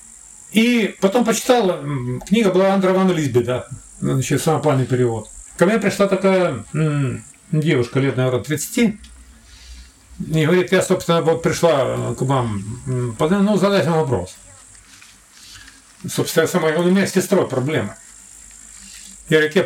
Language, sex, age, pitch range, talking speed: Russian, male, 40-59, 130-190 Hz, 130 wpm